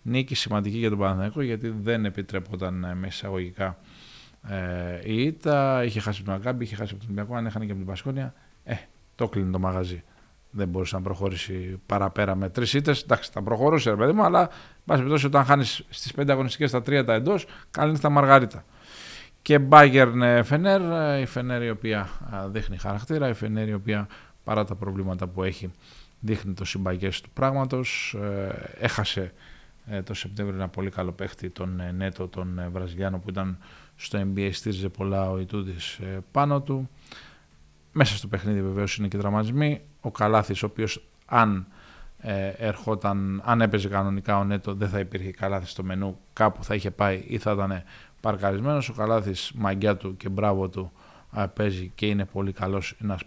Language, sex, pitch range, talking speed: Greek, male, 95-115 Hz, 170 wpm